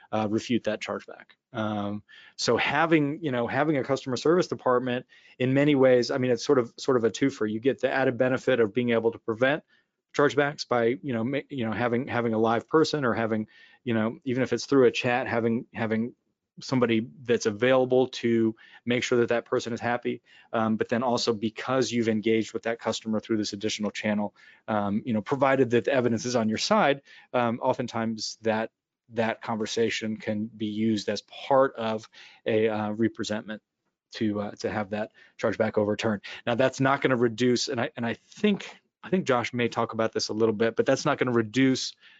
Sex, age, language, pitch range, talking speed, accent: male, 30-49, English, 110-125 Hz, 200 wpm, American